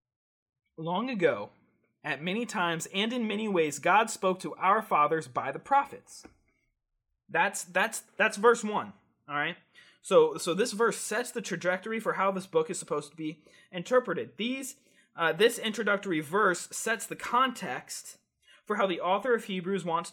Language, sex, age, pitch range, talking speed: English, male, 20-39, 170-235 Hz, 165 wpm